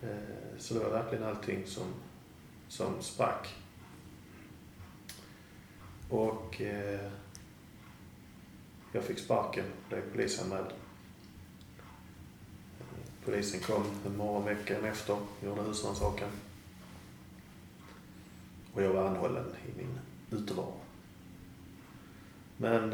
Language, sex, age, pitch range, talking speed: Swedish, male, 30-49, 95-115 Hz, 85 wpm